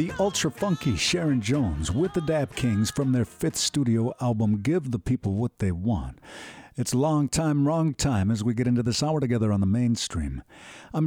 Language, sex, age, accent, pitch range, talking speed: English, male, 50-69, American, 110-150 Hz, 190 wpm